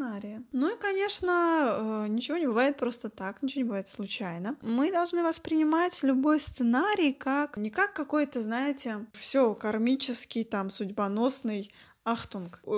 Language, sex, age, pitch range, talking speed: Russian, female, 20-39, 215-275 Hz, 125 wpm